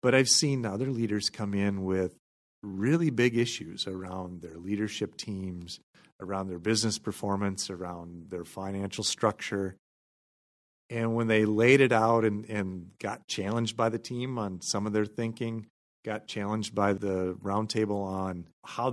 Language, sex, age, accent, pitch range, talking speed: English, male, 40-59, American, 95-120 Hz, 150 wpm